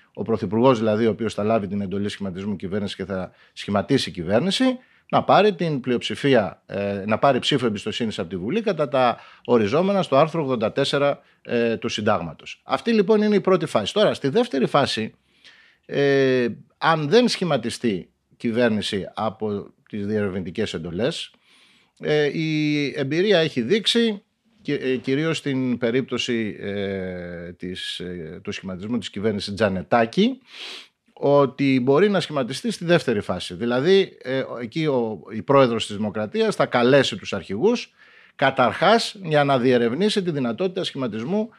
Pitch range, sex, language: 110-185 Hz, male, Greek